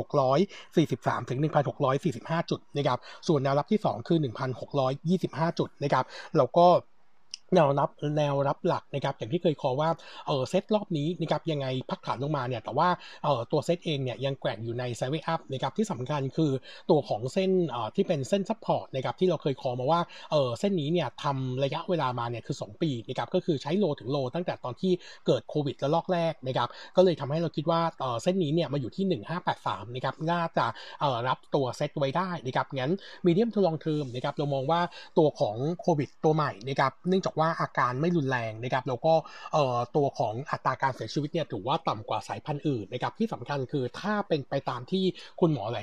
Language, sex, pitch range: Thai, male, 130-170 Hz